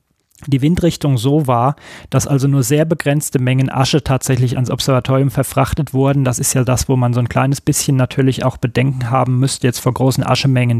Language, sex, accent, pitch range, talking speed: German, male, German, 125-145 Hz, 195 wpm